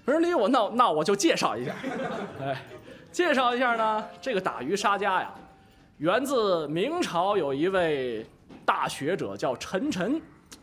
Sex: male